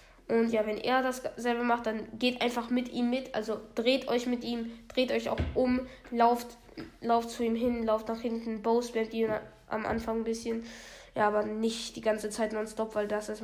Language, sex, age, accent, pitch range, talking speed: German, female, 10-29, German, 220-250 Hz, 205 wpm